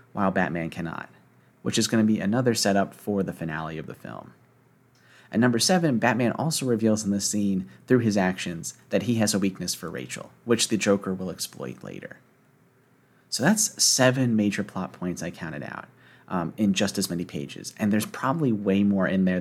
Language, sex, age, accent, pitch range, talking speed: English, male, 30-49, American, 95-110 Hz, 195 wpm